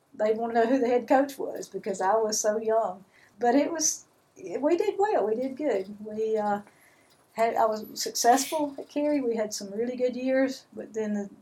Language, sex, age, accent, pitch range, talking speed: English, female, 50-69, American, 205-240 Hz, 210 wpm